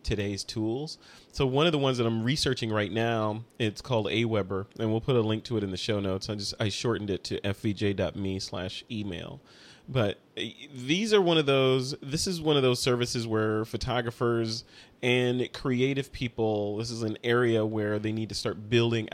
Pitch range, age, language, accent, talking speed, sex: 100-120 Hz, 30-49, English, American, 190 wpm, male